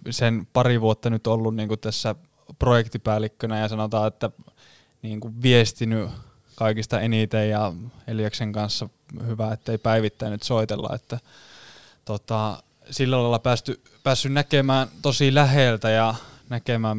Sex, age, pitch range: male, 20-39, 110-120 Hz